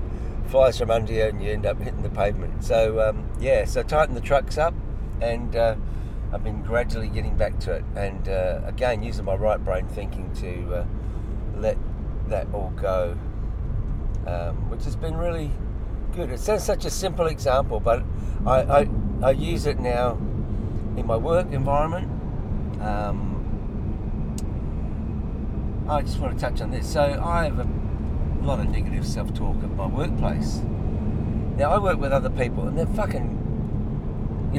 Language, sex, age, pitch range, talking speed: English, male, 50-69, 90-115 Hz, 165 wpm